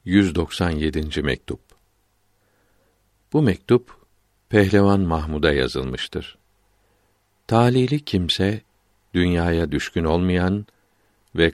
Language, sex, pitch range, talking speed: Turkish, male, 85-105 Hz, 70 wpm